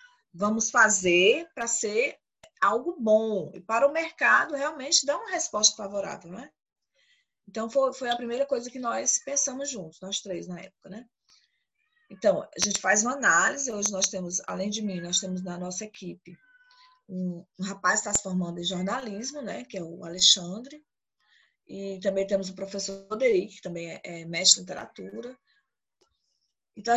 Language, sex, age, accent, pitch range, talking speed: Portuguese, female, 20-39, Brazilian, 195-275 Hz, 170 wpm